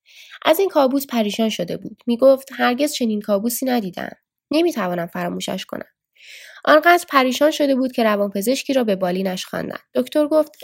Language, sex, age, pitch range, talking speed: Persian, female, 10-29, 195-270 Hz, 160 wpm